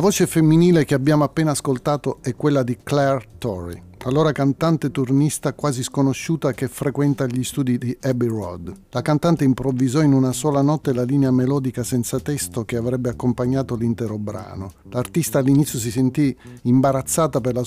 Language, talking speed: Italian, 165 wpm